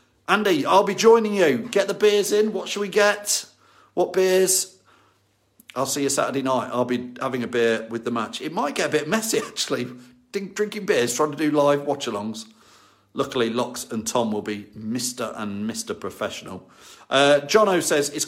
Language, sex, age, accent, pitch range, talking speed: English, male, 40-59, British, 120-205 Hz, 185 wpm